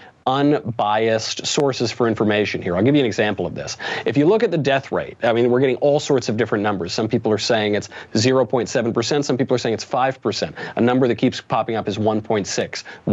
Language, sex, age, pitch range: English, male, 40-59, 110-145 Hz